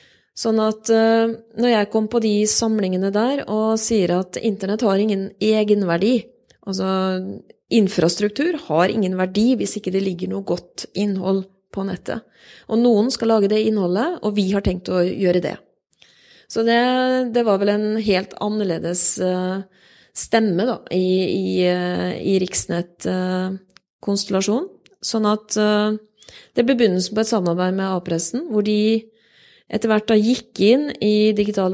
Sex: female